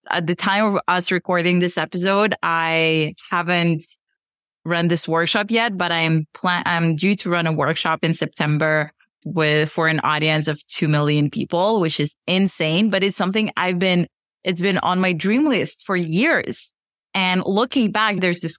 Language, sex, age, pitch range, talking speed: English, female, 20-39, 170-205 Hz, 175 wpm